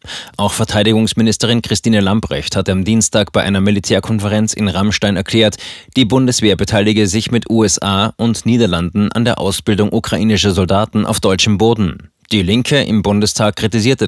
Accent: German